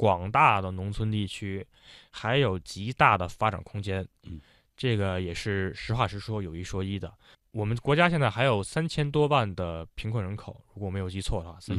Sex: male